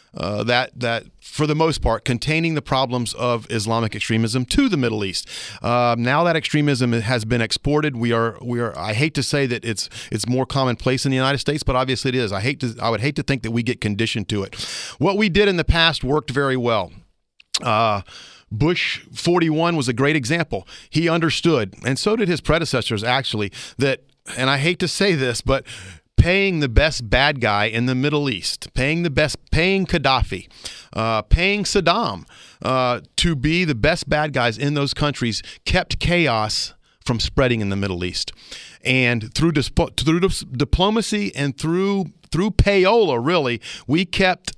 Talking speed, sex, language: 185 wpm, male, English